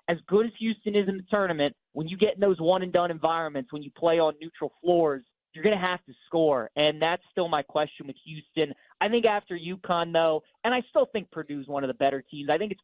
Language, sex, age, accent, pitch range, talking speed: English, male, 30-49, American, 150-180 Hz, 250 wpm